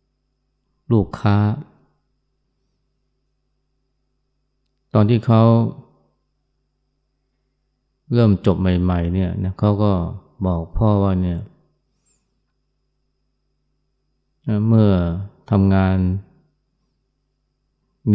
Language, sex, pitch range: Thai, male, 90-105 Hz